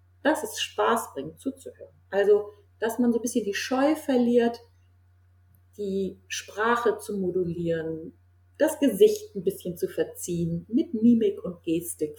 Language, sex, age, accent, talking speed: German, female, 40-59, German, 140 wpm